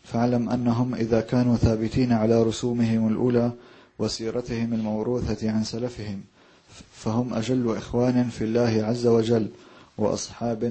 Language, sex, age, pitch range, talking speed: English, male, 30-49, 110-120 Hz, 110 wpm